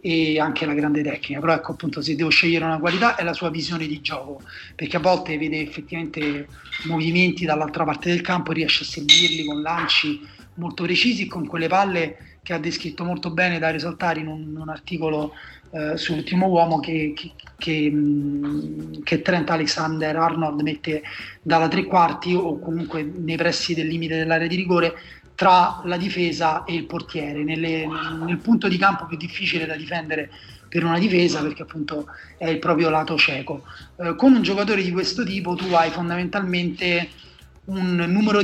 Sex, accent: male, native